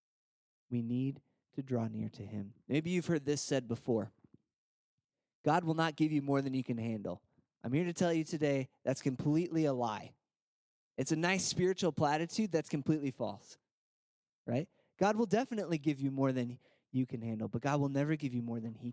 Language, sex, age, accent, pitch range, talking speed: English, male, 20-39, American, 120-155 Hz, 195 wpm